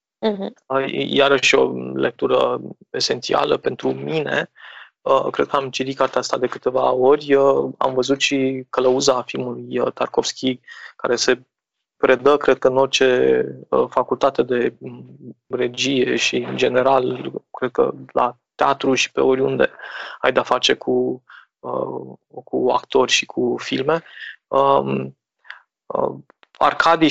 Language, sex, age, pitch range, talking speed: Romanian, male, 20-39, 125-135 Hz, 115 wpm